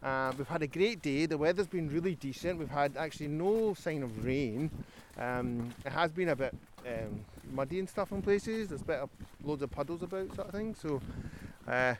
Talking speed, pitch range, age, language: 210 wpm, 130-165 Hz, 30-49, English